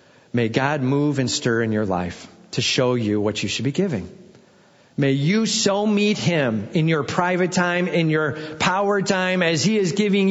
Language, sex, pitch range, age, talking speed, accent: English, male, 135-200 Hz, 40-59, 190 wpm, American